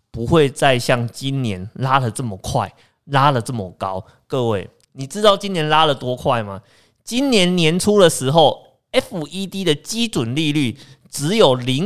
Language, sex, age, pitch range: Chinese, male, 20-39, 110-155 Hz